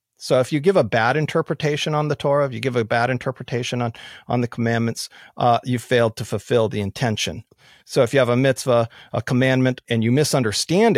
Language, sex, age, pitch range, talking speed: English, male, 40-59, 120-160 Hz, 210 wpm